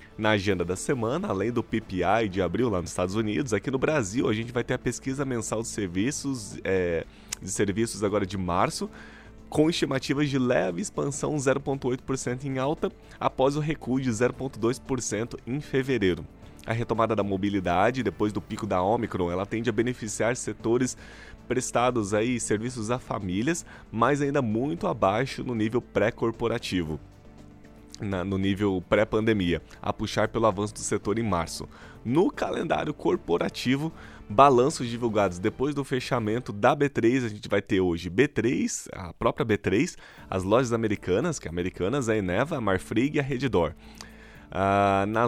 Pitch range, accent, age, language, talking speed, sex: 100-130 Hz, Brazilian, 20-39, Portuguese, 150 wpm, male